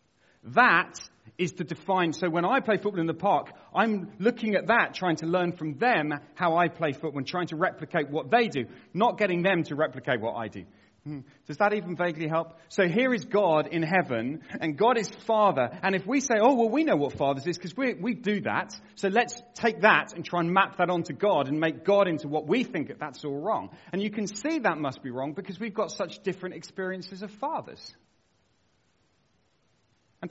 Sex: male